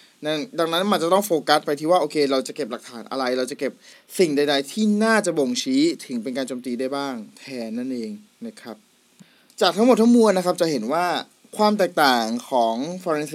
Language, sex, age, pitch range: Thai, male, 20-39, 130-180 Hz